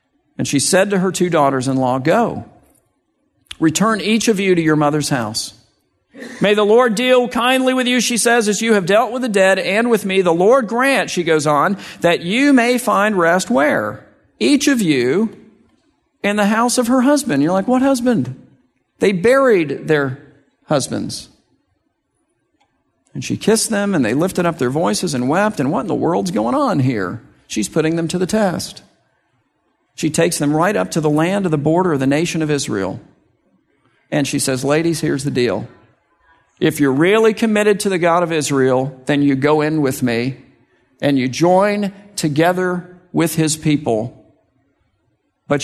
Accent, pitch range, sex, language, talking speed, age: American, 145-210 Hz, male, English, 180 wpm, 50-69